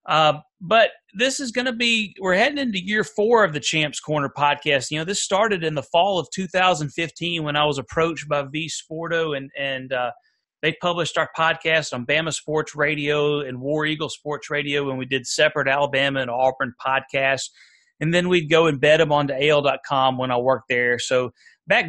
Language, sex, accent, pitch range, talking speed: English, male, American, 145-175 Hz, 195 wpm